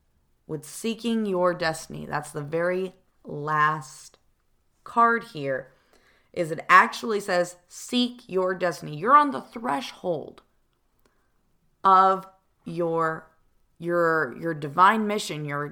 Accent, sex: American, female